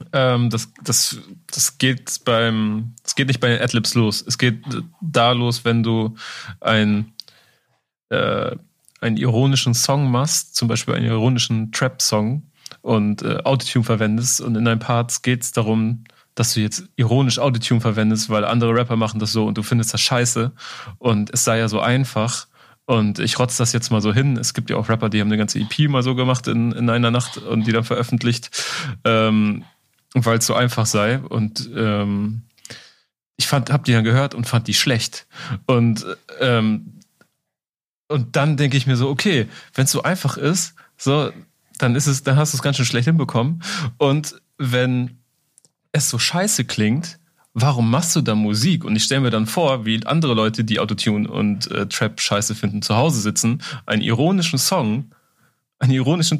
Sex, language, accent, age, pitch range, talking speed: male, German, German, 30-49, 115-140 Hz, 175 wpm